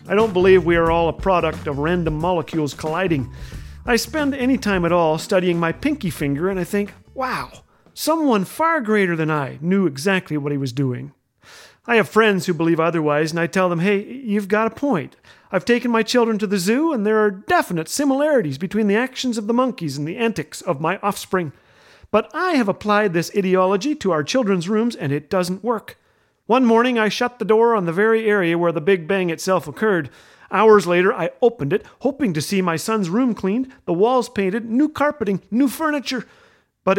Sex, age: male, 40-59